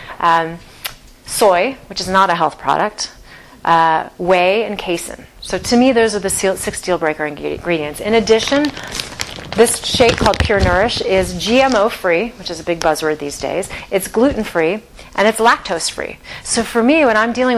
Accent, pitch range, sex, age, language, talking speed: American, 170-210 Hz, female, 30-49, English, 165 wpm